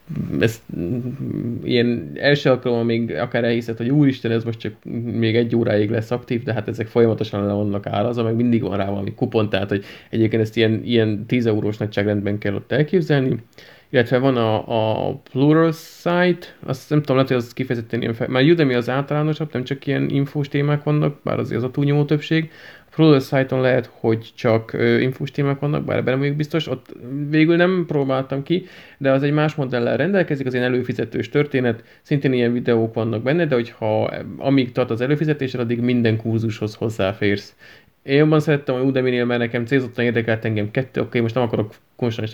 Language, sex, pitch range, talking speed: Hungarian, male, 115-140 Hz, 185 wpm